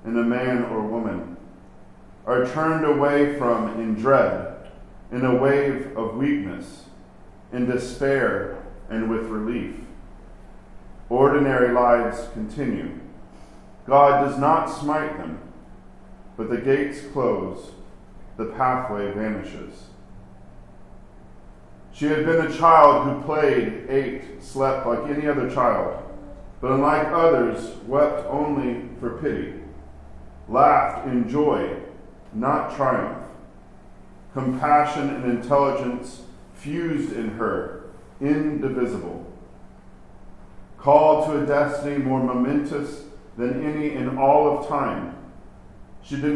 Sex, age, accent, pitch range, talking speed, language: male, 40-59, American, 110-145 Hz, 105 wpm, English